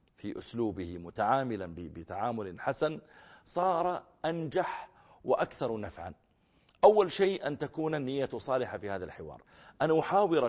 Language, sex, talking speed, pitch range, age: Arabic, male, 115 wpm, 115-165 Hz, 50-69